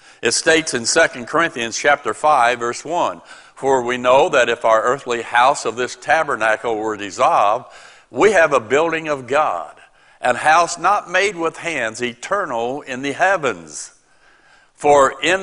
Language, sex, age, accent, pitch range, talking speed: English, male, 60-79, American, 125-160 Hz, 155 wpm